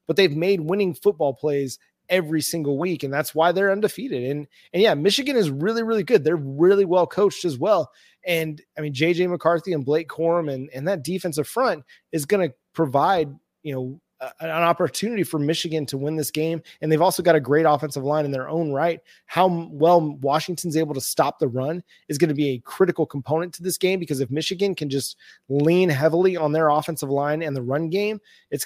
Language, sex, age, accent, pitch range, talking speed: English, male, 30-49, American, 150-175 Hz, 210 wpm